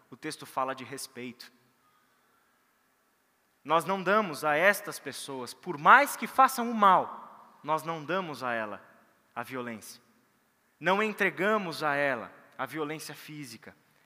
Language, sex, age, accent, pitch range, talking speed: Portuguese, male, 20-39, Brazilian, 130-170 Hz, 130 wpm